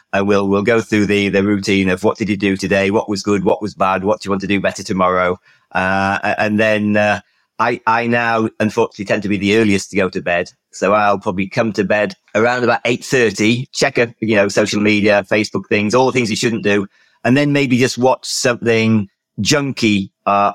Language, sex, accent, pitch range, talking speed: English, male, British, 95-115 Hz, 225 wpm